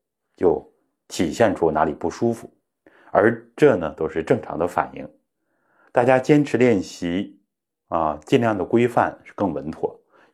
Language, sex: Chinese, male